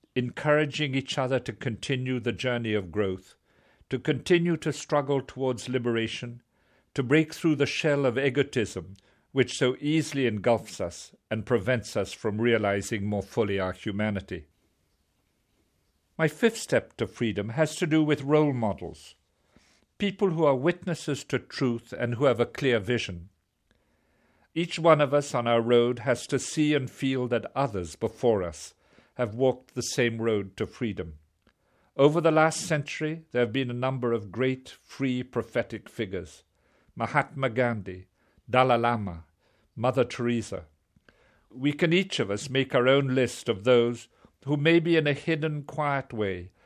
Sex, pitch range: male, 110-145 Hz